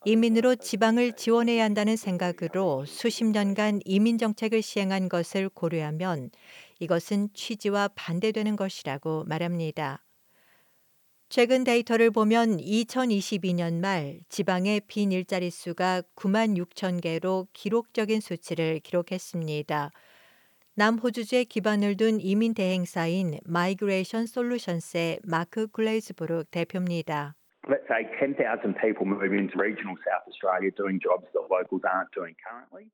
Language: Korean